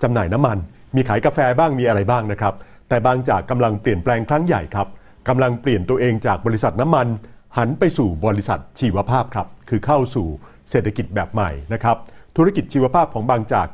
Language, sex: Thai, male